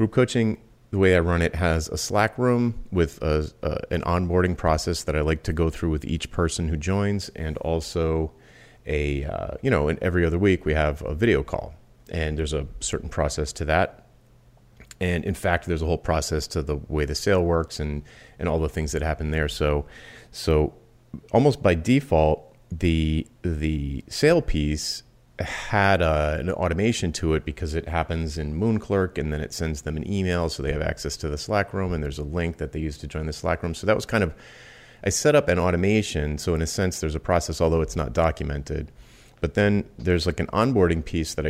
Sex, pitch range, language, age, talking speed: male, 75-90 Hz, English, 30-49, 210 wpm